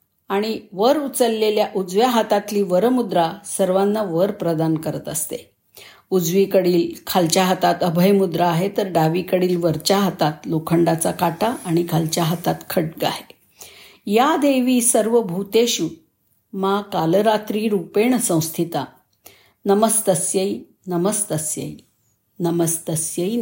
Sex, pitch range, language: female, 170-215 Hz, Marathi